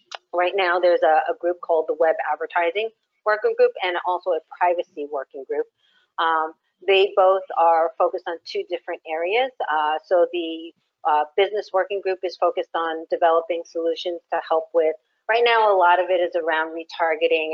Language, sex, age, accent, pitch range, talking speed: English, female, 40-59, American, 160-185 Hz, 170 wpm